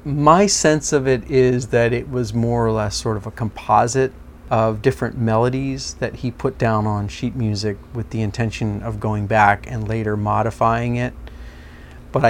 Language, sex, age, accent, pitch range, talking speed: English, male, 40-59, American, 105-125 Hz, 175 wpm